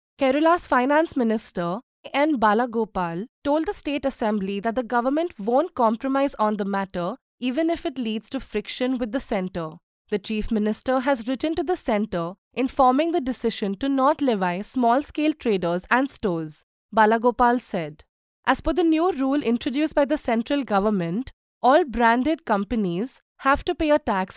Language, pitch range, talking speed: English, 210-285 Hz, 160 wpm